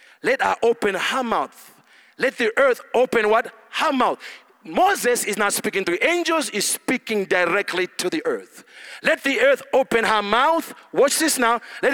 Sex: male